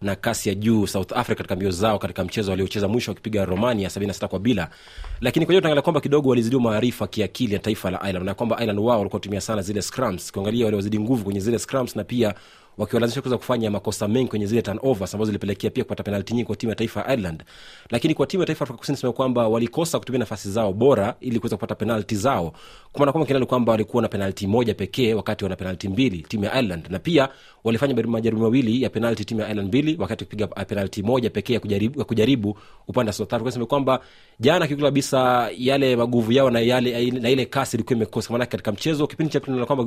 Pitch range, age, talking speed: 105-130 Hz, 30-49, 215 wpm